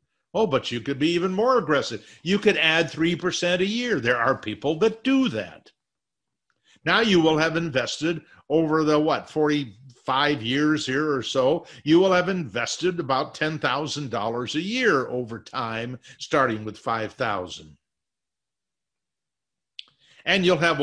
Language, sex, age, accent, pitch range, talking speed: English, male, 50-69, American, 130-175 Hz, 140 wpm